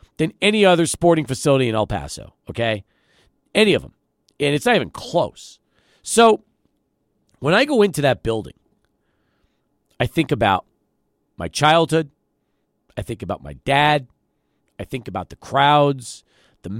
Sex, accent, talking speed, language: male, American, 145 wpm, English